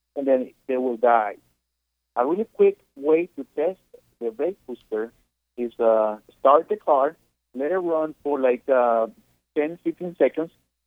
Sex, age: male, 50-69